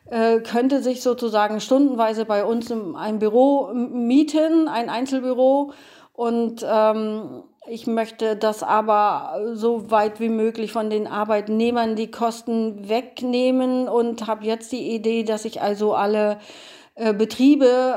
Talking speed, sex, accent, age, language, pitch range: 125 wpm, female, German, 40-59, German, 210-240 Hz